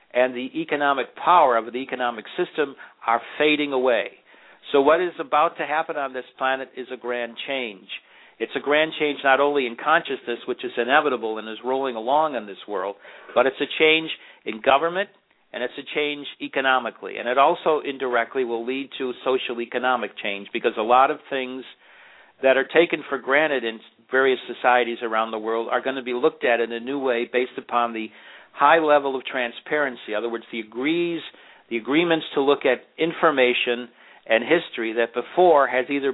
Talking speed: 190 wpm